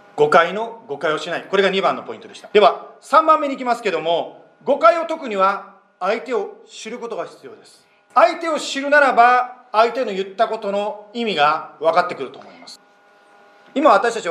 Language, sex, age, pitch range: Japanese, male, 40-59, 200-280 Hz